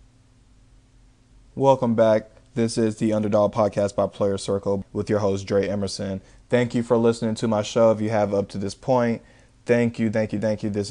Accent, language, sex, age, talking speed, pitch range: American, English, male, 20-39, 200 wpm, 105-120 Hz